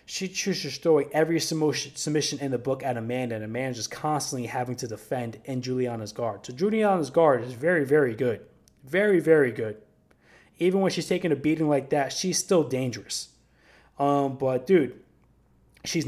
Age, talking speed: 20-39, 170 wpm